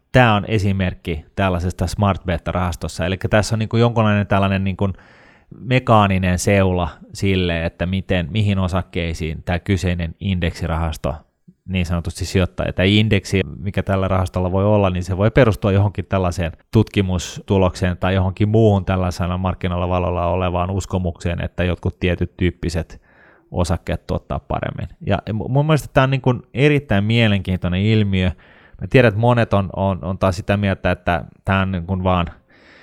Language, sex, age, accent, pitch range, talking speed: Finnish, male, 30-49, native, 90-100 Hz, 150 wpm